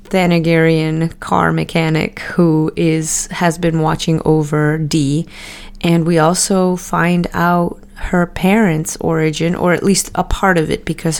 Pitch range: 160-185 Hz